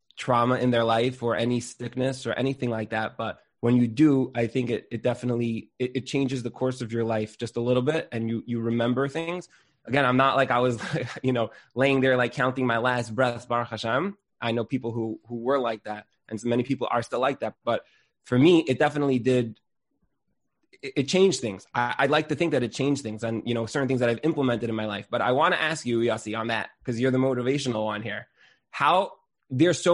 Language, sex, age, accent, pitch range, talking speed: English, male, 20-39, American, 115-135 Hz, 240 wpm